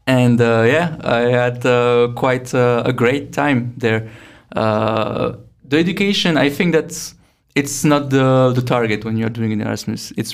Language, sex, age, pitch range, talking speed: Czech, male, 20-39, 110-120 Hz, 170 wpm